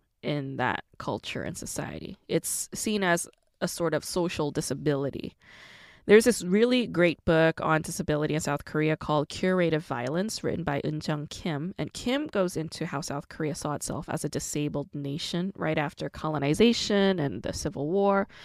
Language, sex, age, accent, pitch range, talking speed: English, female, 20-39, American, 150-190 Hz, 165 wpm